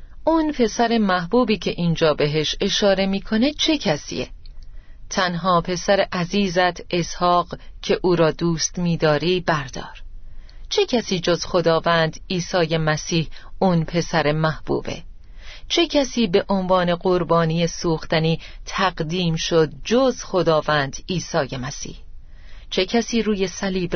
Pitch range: 155-195 Hz